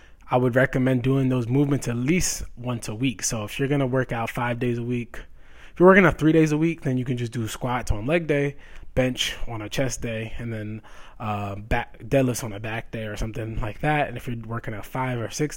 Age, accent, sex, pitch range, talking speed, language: 20-39, American, male, 110-130 Hz, 245 wpm, English